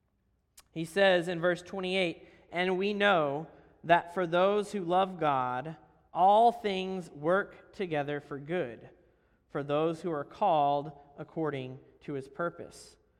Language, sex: English, male